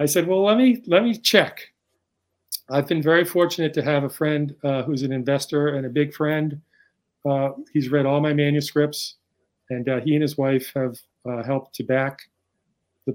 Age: 40-59